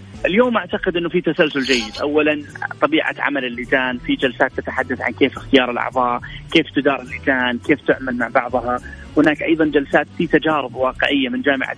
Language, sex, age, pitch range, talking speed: Arabic, male, 30-49, 130-165 Hz, 165 wpm